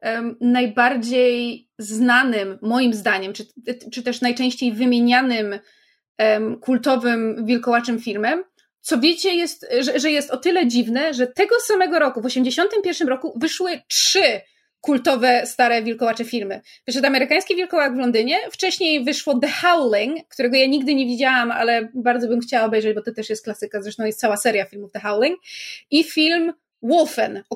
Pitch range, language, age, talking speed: 245-320 Hz, Polish, 20-39, 155 wpm